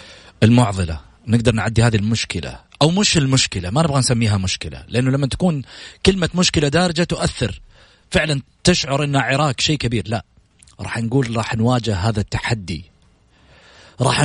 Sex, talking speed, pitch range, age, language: male, 140 wpm, 95-150 Hz, 40-59, Arabic